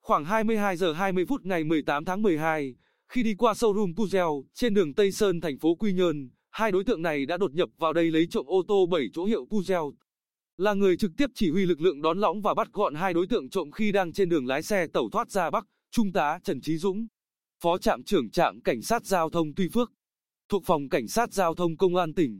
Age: 20-39